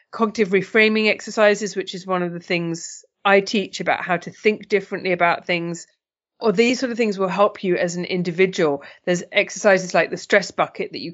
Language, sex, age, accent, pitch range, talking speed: English, female, 30-49, British, 175-205 Hz, 200 wpm